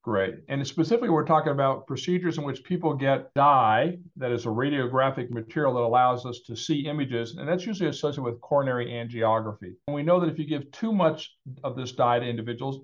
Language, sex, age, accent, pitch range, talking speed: English, male, 50-69, American, 130-165 Hz, 205 wpm